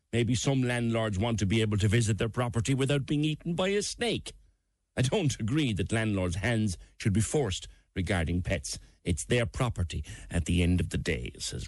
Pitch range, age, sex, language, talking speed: 85-115 Hz, 60-79, male, English, 195 wpm